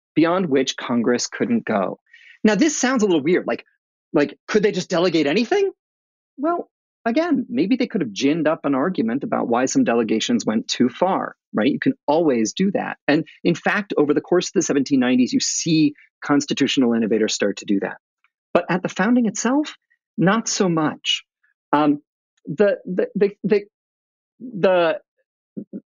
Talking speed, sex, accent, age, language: 165 wpm, male, American, 40-59, English